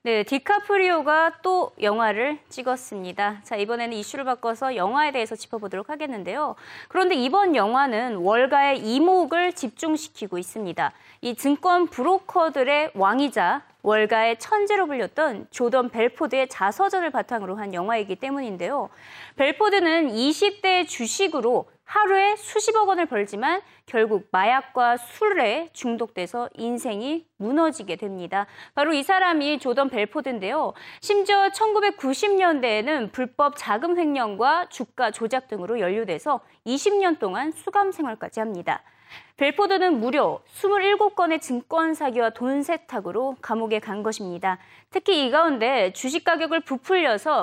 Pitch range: 230-350 Hz